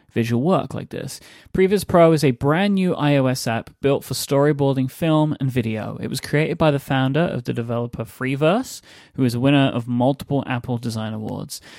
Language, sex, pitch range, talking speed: English, male, 125-160 Hz, 190 wpm